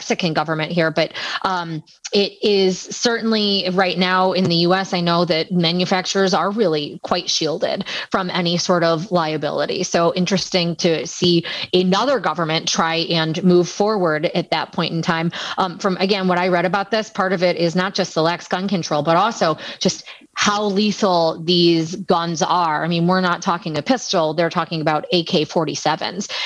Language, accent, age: English, American, 30-49